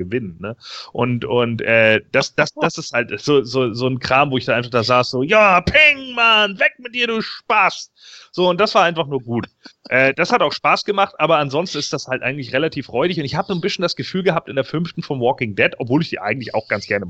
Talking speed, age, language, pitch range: 255 wpm, 30-49, German, 120-160 Hz